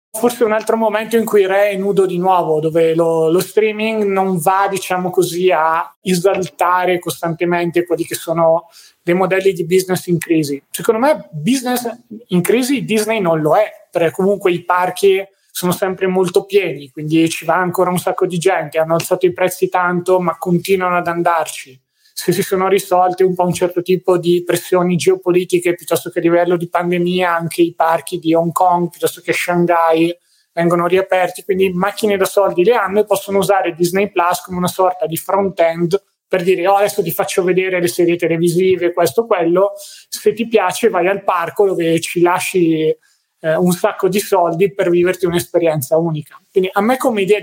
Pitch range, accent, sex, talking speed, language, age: 170-195 Hz, native, male, 185 wpm, Italian, 30-49